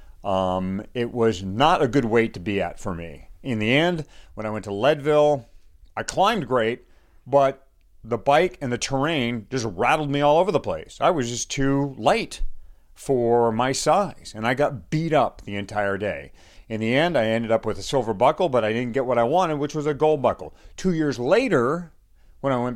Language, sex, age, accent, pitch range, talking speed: English, male, 40-59, American, 105-145 Hz, 210 wpm